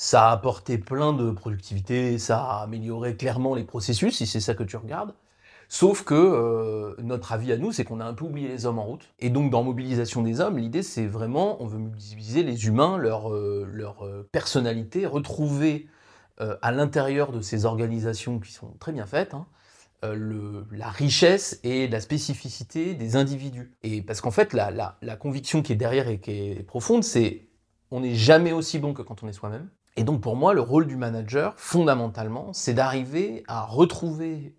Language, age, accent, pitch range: French, 30-49, French, 110-140 Hz